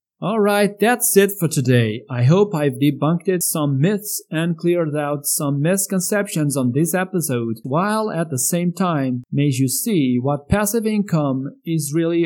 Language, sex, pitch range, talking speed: English, male, 140-190 Hz, 160 wpm